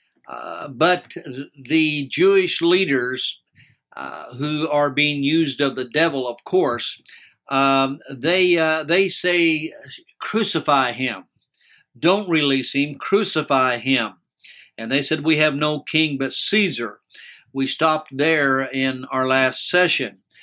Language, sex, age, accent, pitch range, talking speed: English, male, 60-79, American, 130-160 Hz, 125 wpm